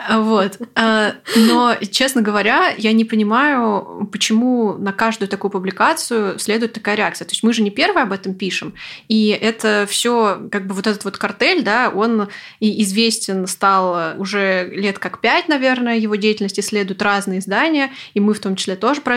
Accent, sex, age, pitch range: native, female, 20-39, 195-230 Hz